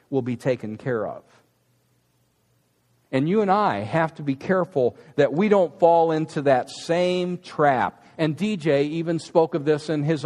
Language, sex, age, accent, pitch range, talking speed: English, male, 50-69, American, 165-225 Hz, 170 wpm